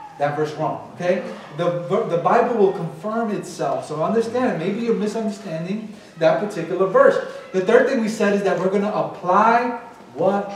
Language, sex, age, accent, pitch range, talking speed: English, male, 30-49, American, 175-230 Hz, 170 wpm